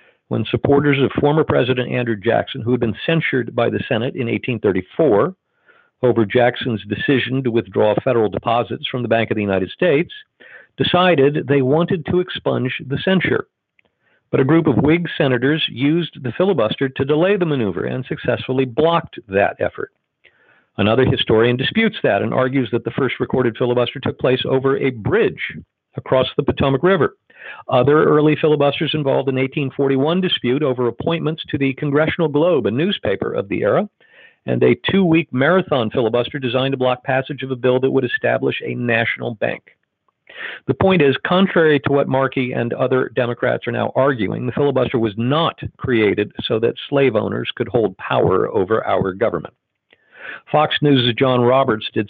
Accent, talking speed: American, 165 wpm